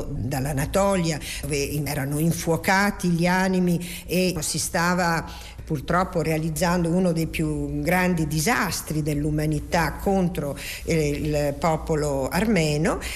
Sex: female